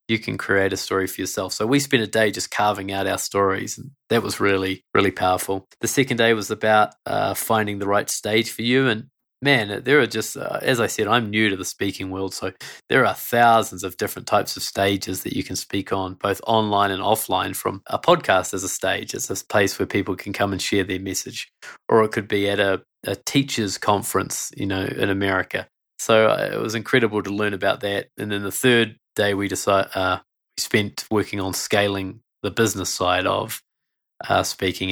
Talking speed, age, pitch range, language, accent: 210 wpm, 20-39, 95-115 Hz, English, Australian